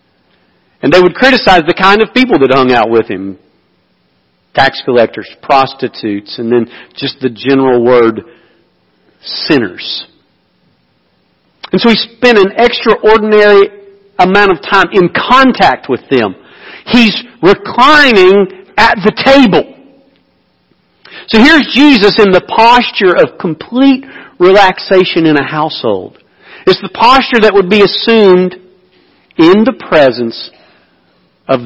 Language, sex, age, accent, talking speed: English, male, 50-69, American, 125 wpm